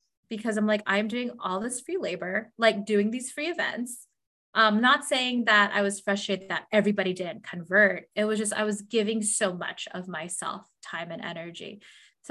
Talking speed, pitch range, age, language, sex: 190 wpm, 195-245 Hz, 20-39, English, female